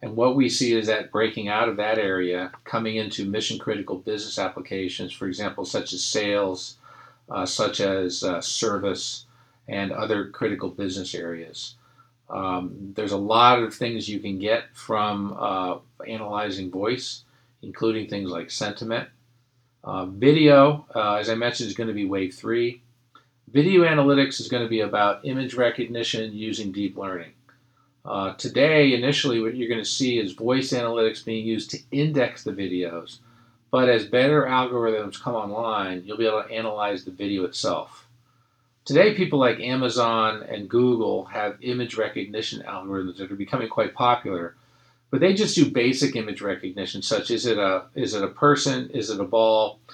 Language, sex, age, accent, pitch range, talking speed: English, male, 50-69, American, 100-125 Hz, 160 wpm